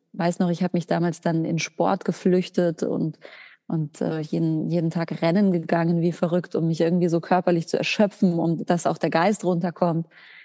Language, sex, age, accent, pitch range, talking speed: German, female, 30-49, German, 170-195 Hz, 190 wpm